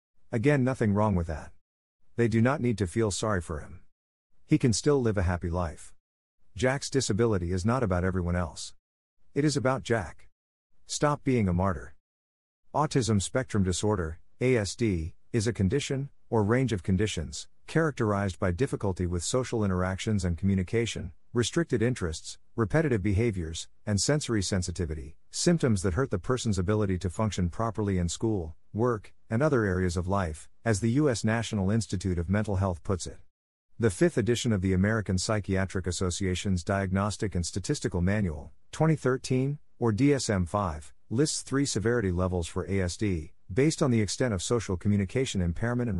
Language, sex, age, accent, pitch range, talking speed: English, male, 50-69, American, 90-120 Hz, 155 wpm